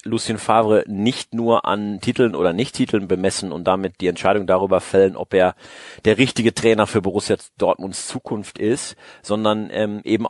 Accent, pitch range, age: German, 105-125 Hz, 40-59